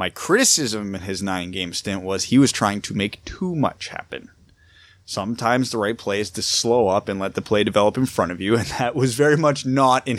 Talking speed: 230 wpm